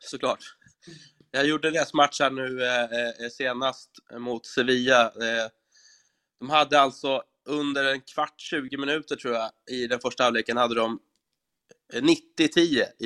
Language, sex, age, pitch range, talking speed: Swedish, male, 20-39, 115-140 Hz, 130 wpm